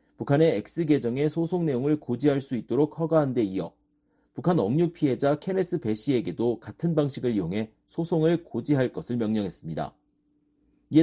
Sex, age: male, 40-59